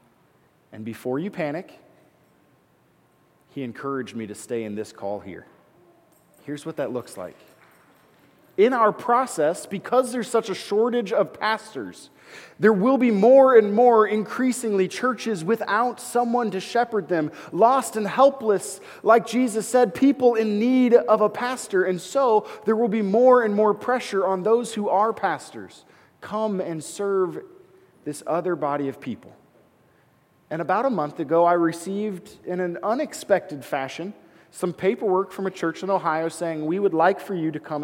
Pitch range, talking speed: 155-220 Hz, 160 wpm